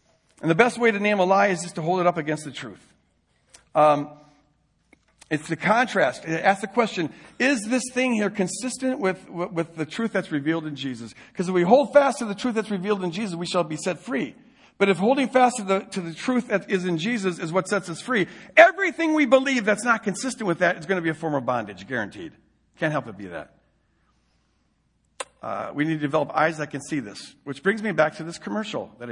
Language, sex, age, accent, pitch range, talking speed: English, male, 50-69, American, 155-220 Hz, 230 wpm